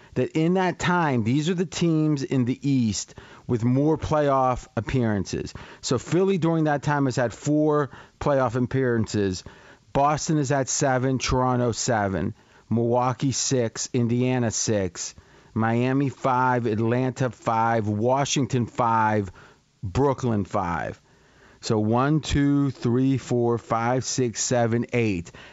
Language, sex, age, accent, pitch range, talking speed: English, male, 40-59, American, 120-145 Hz, 120 wpm